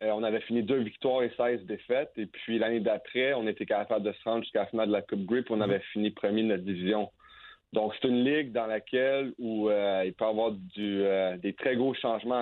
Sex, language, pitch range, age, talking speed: male, French, 100-115 Hz, 30-49, 245 wpm